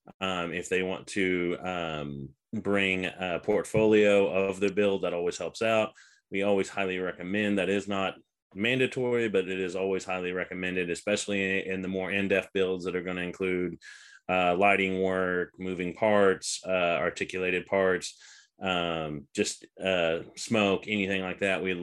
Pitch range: 90-100 Hz